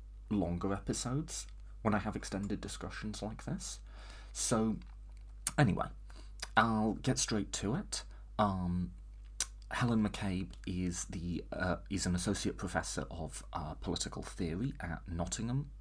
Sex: male